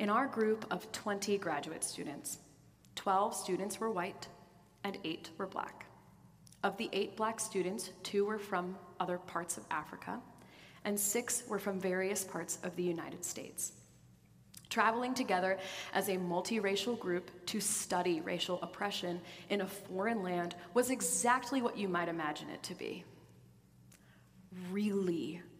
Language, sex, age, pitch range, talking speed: English, female, 30-49, 175-210 Hz, 145 wpm